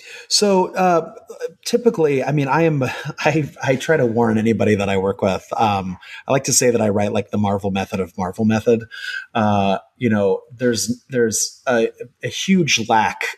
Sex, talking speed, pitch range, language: male, 185 wpm, 100-125 Hz, English